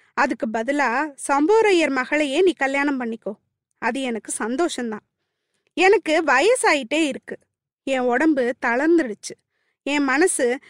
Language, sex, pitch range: Tamil, female, 260-355 Hz